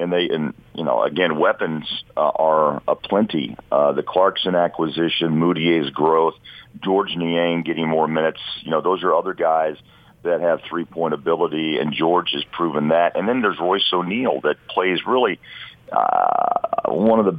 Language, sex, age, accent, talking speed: English, male, 50-69, American, 175 wpm